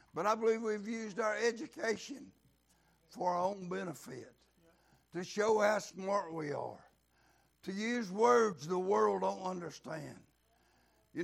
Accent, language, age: American, English, 60-79